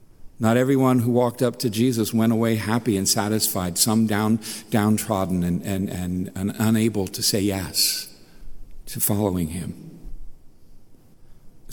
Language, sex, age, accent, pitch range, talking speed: English, male, 50-69, American, 110-150 Hz, 135 wpm